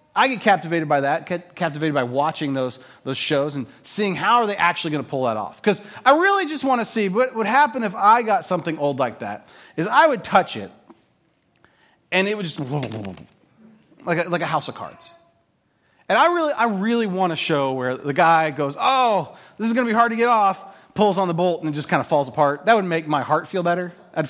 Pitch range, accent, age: 140-215 Hz, American, 30-49